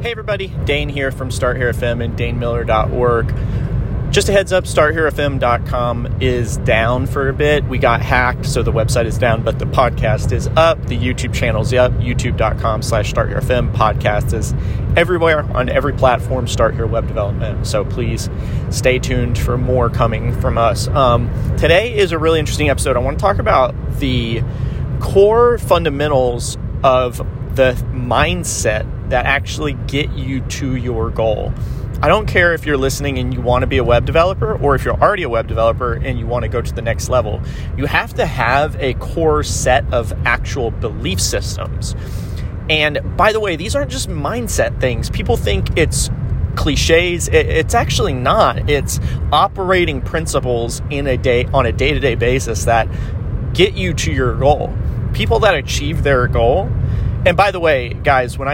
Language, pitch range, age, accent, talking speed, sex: English, 115-130 Hz, 30-49, American, 175 wpm, male